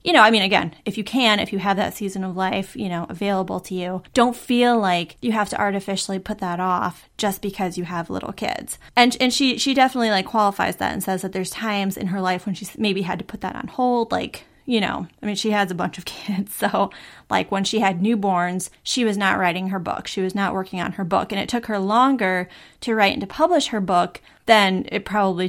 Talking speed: 250 wpm